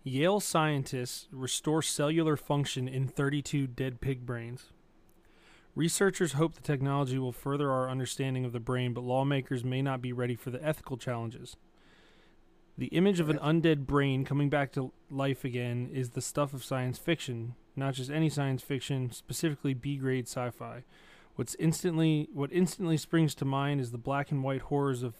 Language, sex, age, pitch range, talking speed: English, male, 20-39, 130-150 Hz, 160 wpm